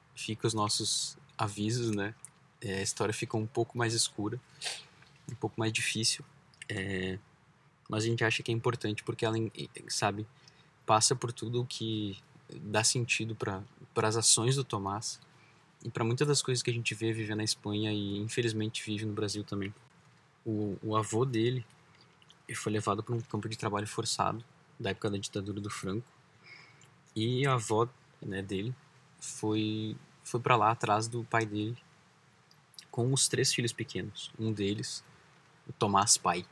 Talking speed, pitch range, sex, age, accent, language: 165 wpm, 105-130 Hz, male, 20-39, Brazilian, Portuguese